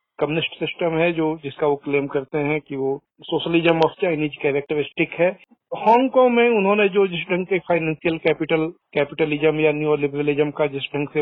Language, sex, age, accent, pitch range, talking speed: Hindi, male, 50-69, native, 155-190 Hz, 175 wpm